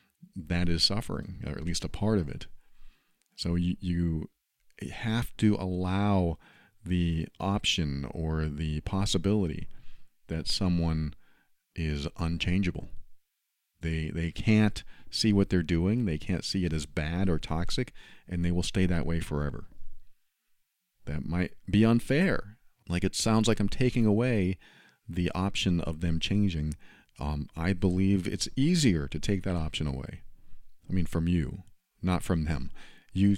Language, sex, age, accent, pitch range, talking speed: English, male, 40-59, American, 80-100 Hz, 145 wpm